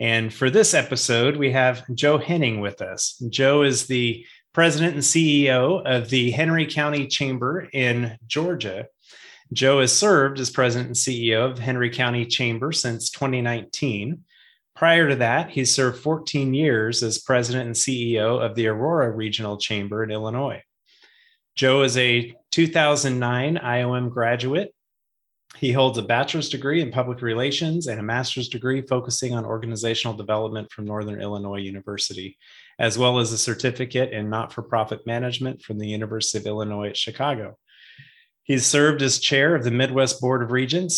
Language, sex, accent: English, male, American